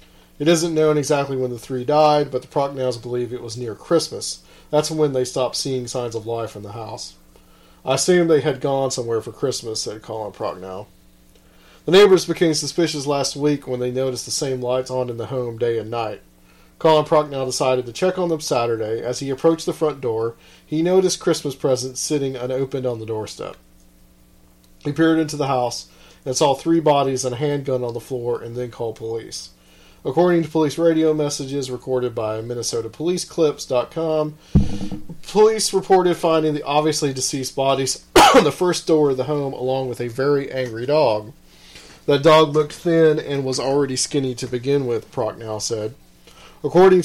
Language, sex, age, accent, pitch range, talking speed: English, male, 40-59, American, 115-150 Hz, 180 wpm